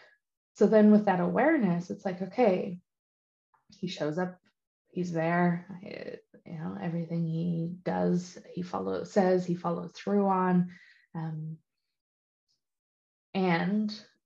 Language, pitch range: English, 175-205 Hz